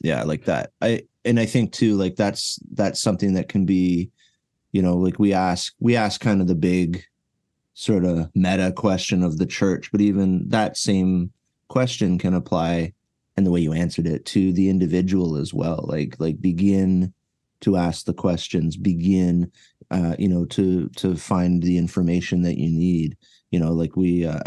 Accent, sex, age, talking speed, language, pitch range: American, male, 30-49, 185 wpm, English, 80-95 Hz